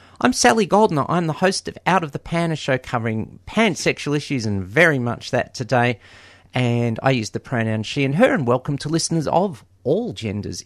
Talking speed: 205 wpm